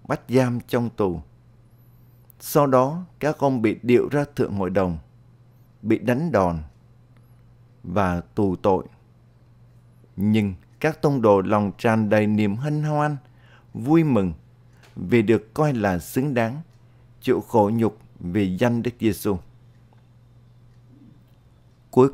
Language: Vietnamese